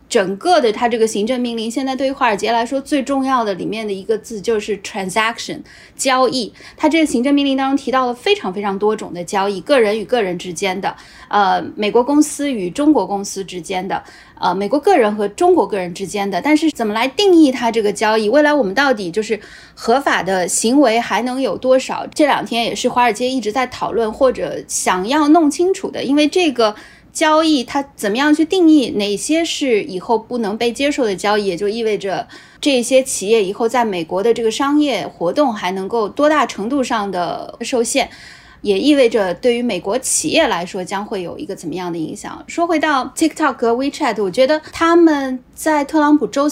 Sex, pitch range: female, 205-280 Hz